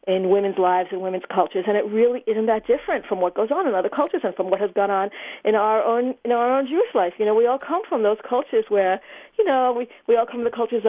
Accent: American